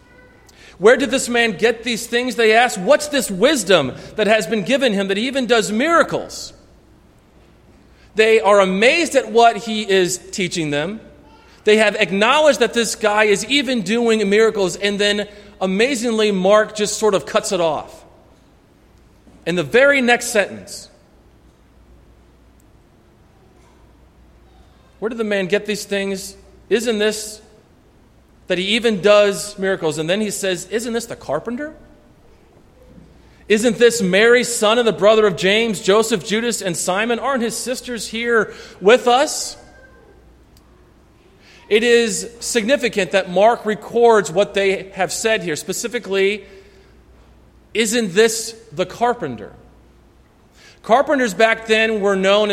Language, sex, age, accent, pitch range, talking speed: English, male, 40-59, American, 195-235 Hz, 135 wpm